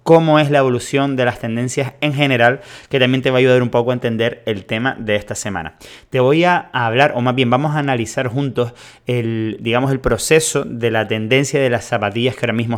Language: Spanish